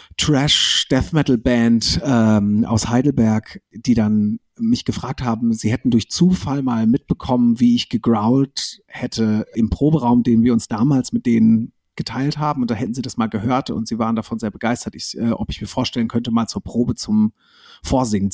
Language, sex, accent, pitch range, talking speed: German, male, German, 110-130 Hz, 175 wpm